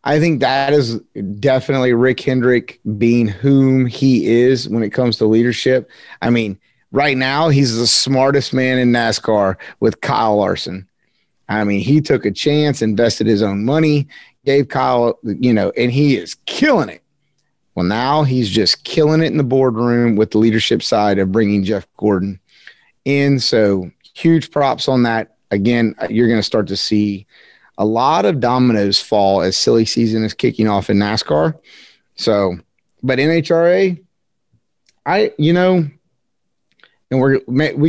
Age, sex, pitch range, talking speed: 30-49, male, 110-135 Hz, 160 wpm